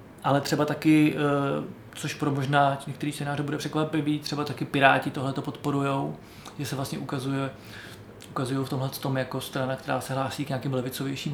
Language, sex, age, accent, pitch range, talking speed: Czech, male, 20-39, native, 135-155 Hz, 160 wpm